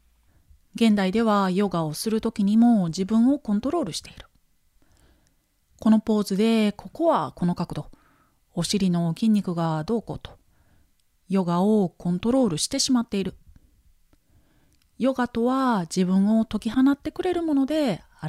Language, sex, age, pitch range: Japanese, female, 30-49, 175-245 Hz